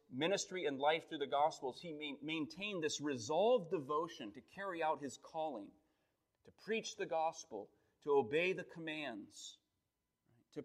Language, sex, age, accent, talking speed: English, male, 30-49, American, 140 wpm